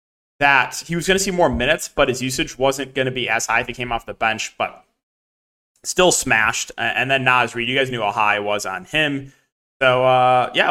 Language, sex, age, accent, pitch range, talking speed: English, male, 20-39, American, 125-145 Hz, 230 wpm